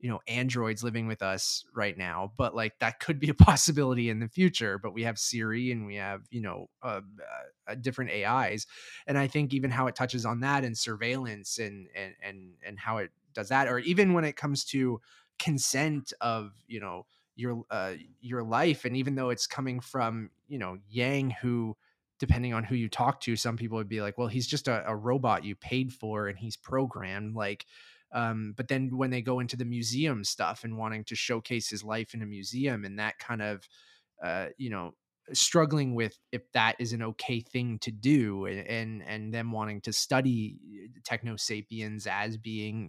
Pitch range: 105-130 Hz